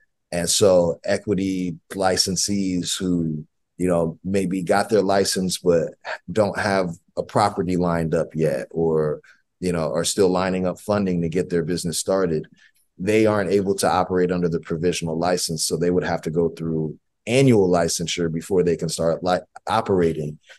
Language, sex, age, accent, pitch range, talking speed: English, male, 30-49, American, 80-95 Hz, 160 wpm